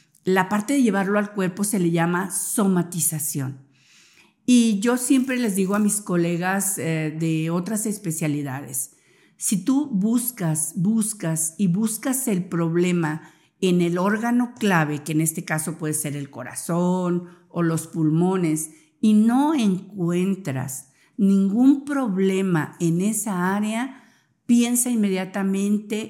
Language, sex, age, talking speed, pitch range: Spanish, female, 50-69, 125 wpm, 165-215 Hz